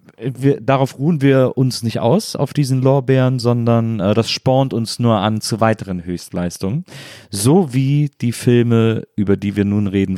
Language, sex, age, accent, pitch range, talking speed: German, male, 40-59, German, 100-120 Hz, 165 wpm